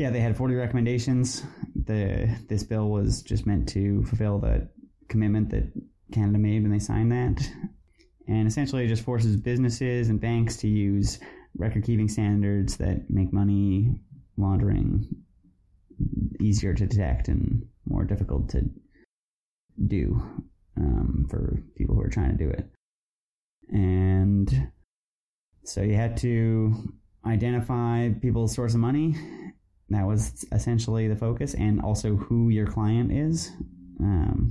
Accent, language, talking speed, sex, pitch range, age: American, English, 135 wpm, male, 100-120 Hz, 20-39